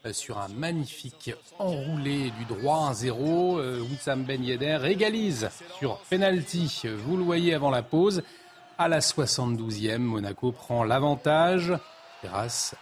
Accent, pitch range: French, 120-170 Hz